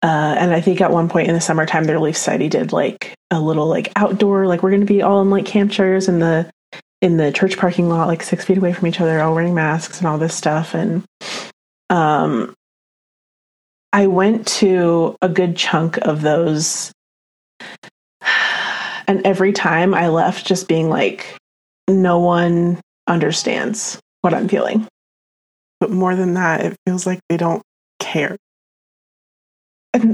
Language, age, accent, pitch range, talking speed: English, 30-49, American, 165-200 Hz, 170 wpm